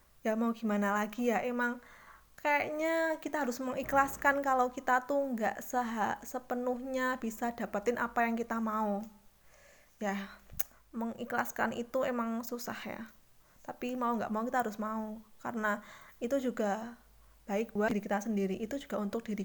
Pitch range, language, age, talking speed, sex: 215-250 Hz, Indonesian, 20-39, 145 wpm, female